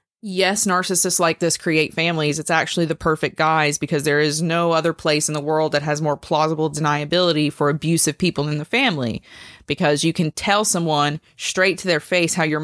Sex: female